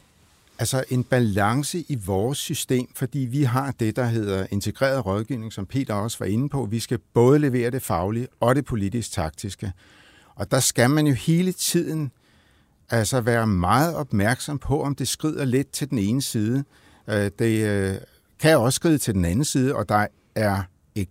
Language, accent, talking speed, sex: Danish, native, 175 wpm, male